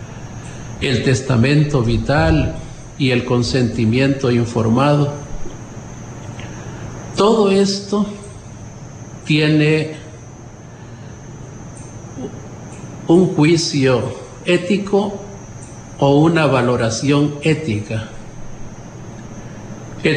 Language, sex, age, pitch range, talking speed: Spanish, male, 50-69, 115-150 Hz, 55 wpm